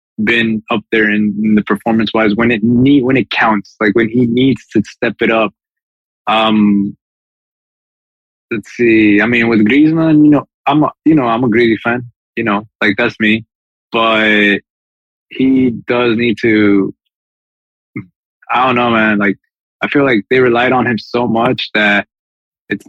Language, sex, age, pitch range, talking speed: English, male, 20-39, 100-125 Hz, 170 wpm